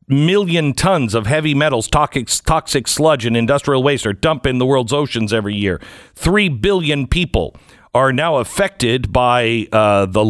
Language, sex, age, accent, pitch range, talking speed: English, male, 50-69, American, 115-155 Hz, 165 wpm